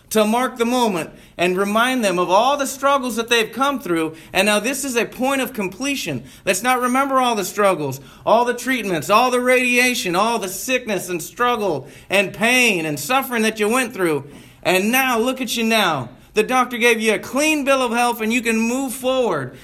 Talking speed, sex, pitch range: 210 wpm, male, 180-255 Hz